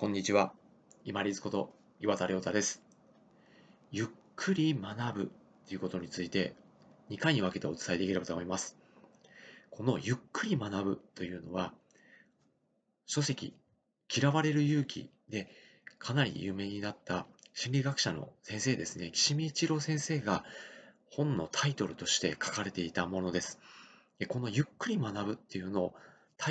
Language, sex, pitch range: Japanese, male, 95-145 Hz